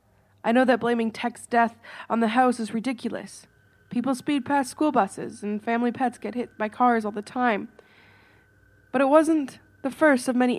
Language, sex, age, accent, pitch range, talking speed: English, female, 20-39, American, 220-270 Hz, 185 wpm